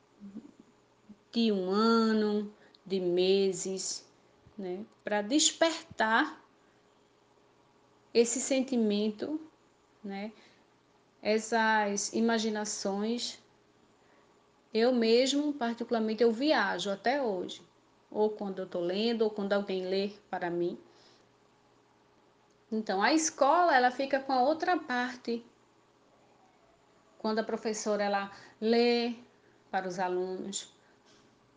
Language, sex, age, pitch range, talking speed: Portuguese, female, 20-39, 195-235 Hz, 85 wpm